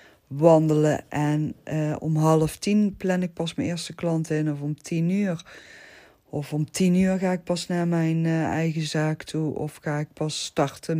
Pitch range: 145-165 Hz